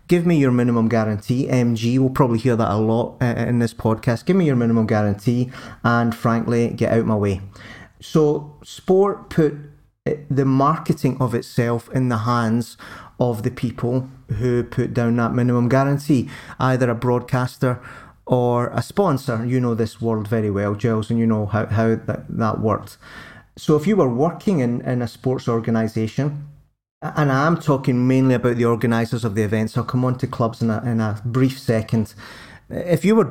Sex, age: male, 30-49